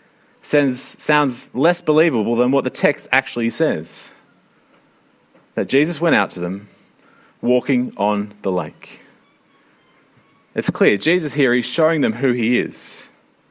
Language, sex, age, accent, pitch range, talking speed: English, male, 30-49, Australian, 130-175 Hz, 125 wpm